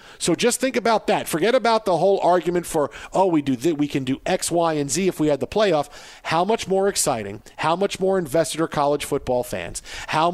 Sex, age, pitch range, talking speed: male, 50-69, 150-190 Hz, 230 wpm